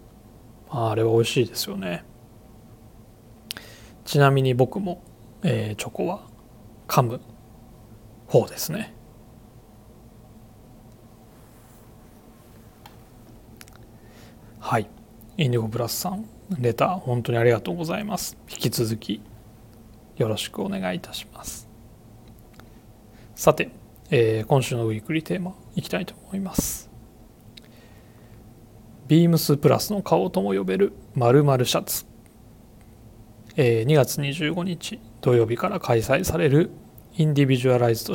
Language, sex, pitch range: Japanese, male, 110-135 Hz